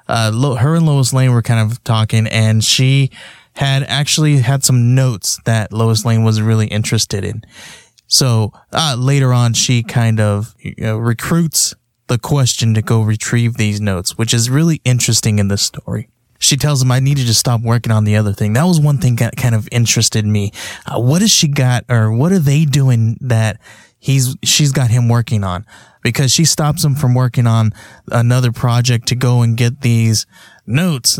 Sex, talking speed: male, 195 wpm